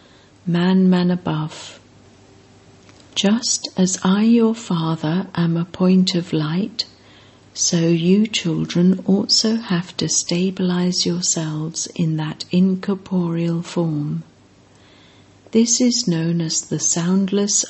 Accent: British